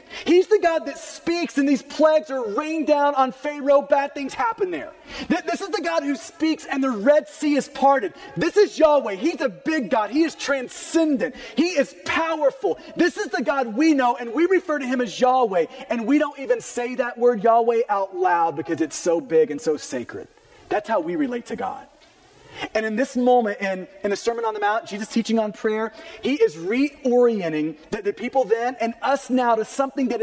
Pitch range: 220-310 Hz